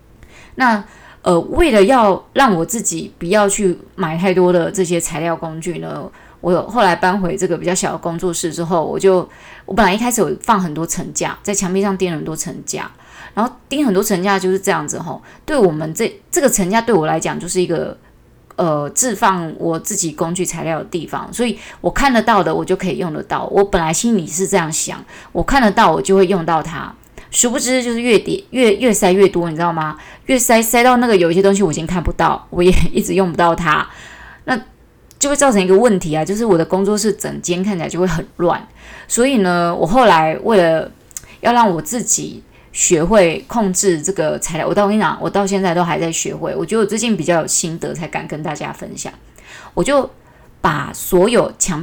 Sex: female